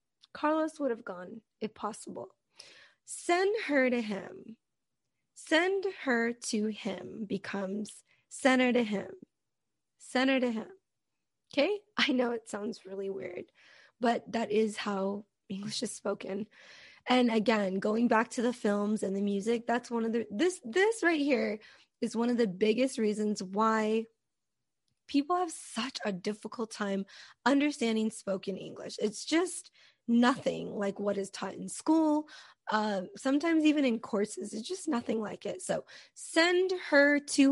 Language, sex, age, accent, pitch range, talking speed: English, female, 20-39, American, 205-275 Hz, 150 wpm